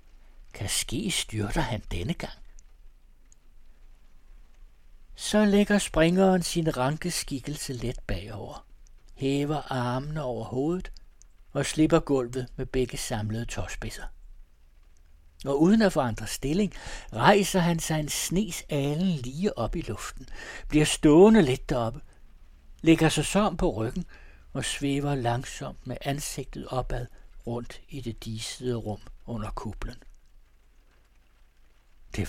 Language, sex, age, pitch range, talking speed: Danish, male, 60-79, 100-150 Hz, 115 wpm